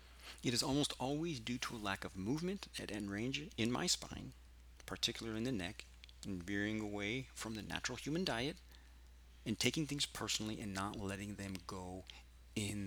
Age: 40-59